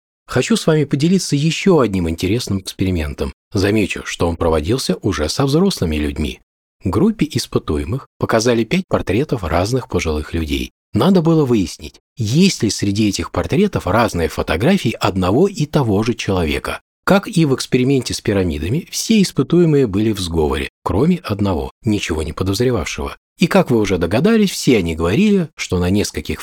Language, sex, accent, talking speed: Russian, male, native, 150 wpm